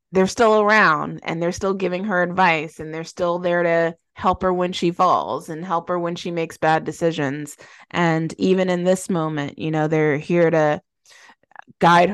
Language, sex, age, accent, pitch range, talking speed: English, female, 20-39, American, 155-175 Hz, 190 wpm